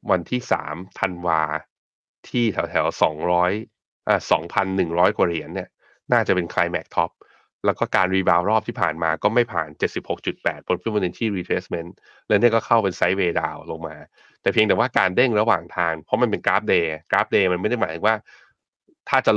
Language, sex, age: Thai, male, 20-39